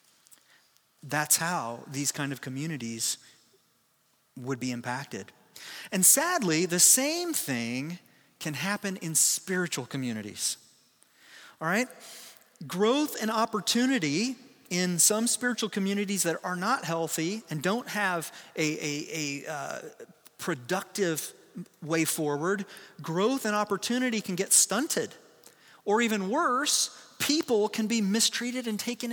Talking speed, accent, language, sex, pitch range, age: 115 wpm, American, English, male, 150-225 Hz, 30-49